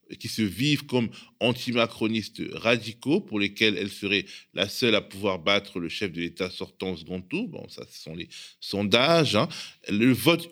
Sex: male